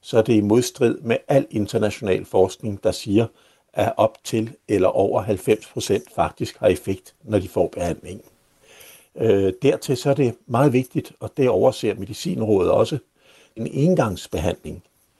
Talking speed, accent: 155 wpm, native